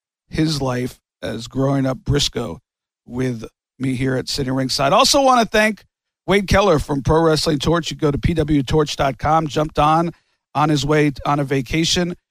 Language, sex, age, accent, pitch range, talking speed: English, male, 50-69, American, 135-170 Hz, 165 wpm